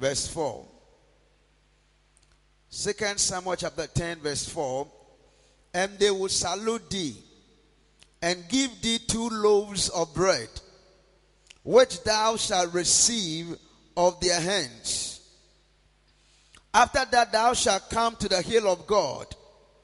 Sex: male